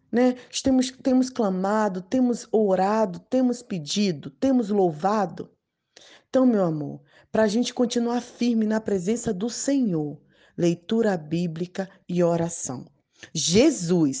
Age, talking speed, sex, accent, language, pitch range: 20-39, 110 wpm, female, Brazilian, Portuguese, 175-225 Hz